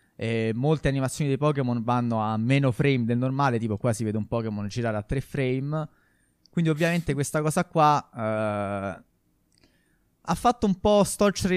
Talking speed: 160 wpm